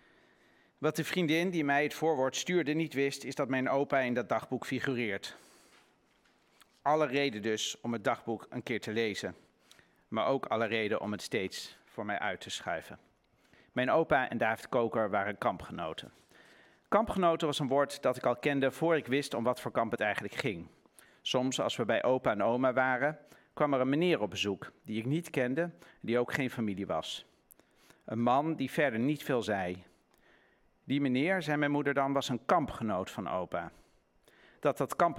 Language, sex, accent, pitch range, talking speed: Dutch, male, Dutch, 125-150 Hz, 190 wpm